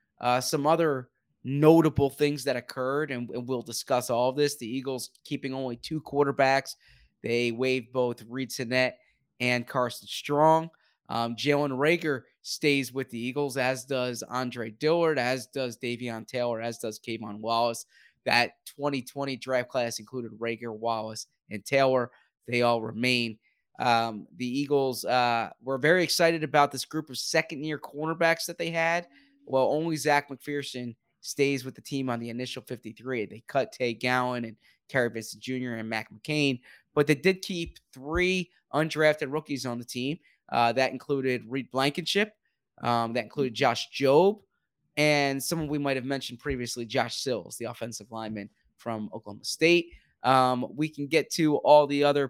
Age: 20-39